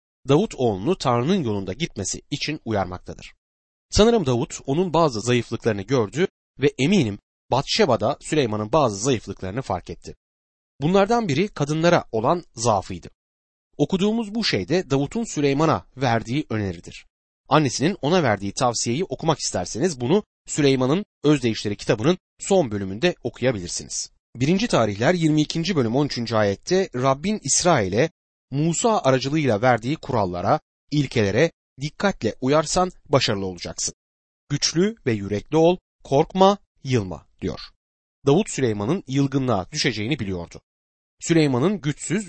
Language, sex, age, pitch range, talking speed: Turkish, male, 30-49, 105-165 Hz, 110 wpm